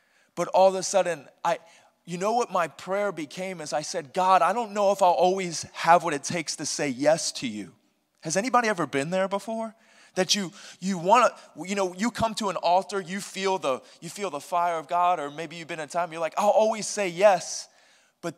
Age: 20-39